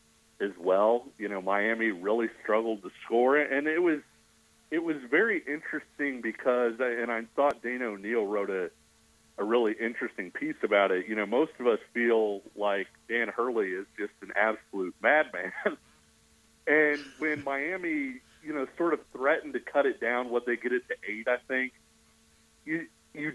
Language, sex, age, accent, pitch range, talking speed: English, male, 40-59, American, 110-145 Hz, 170 wpm